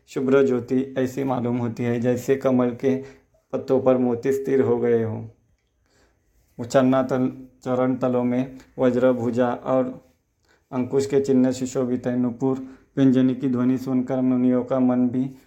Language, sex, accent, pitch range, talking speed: Hindi, male, native, 125-135 Hz, 145 wpm